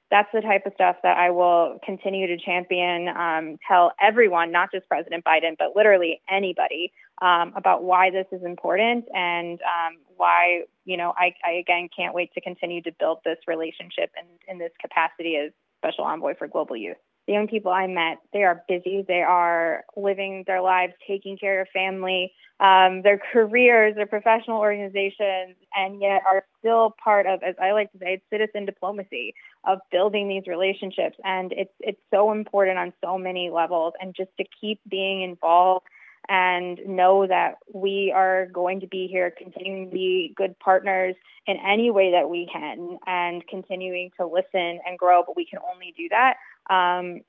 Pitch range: 180-200 Hz